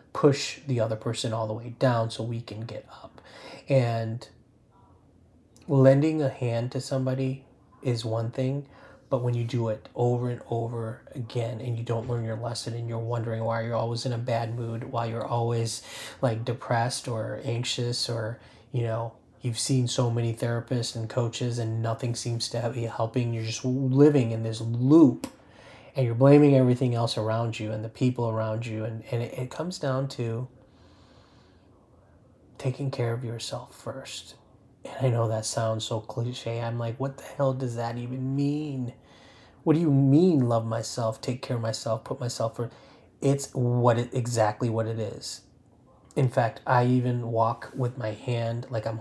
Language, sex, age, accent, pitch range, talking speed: English, male, 30-49, American, 115-130 Hz, 180 wpm